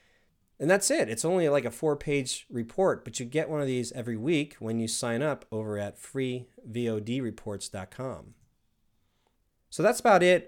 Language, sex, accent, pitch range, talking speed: English, male, American, 110-135 Hz, 160 wpm